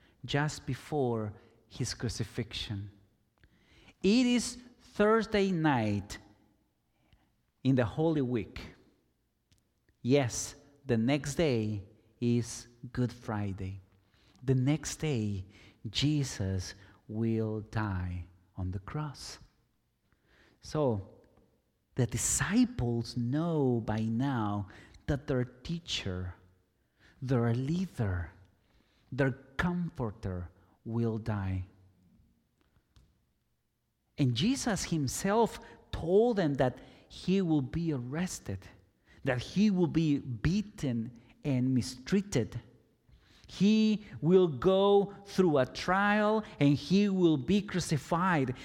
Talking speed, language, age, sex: 90 wpm, English, 40-59, male